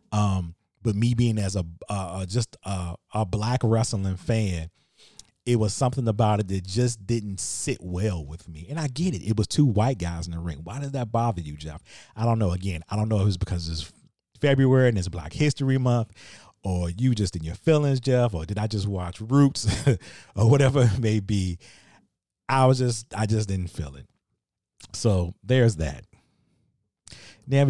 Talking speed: 195 wpm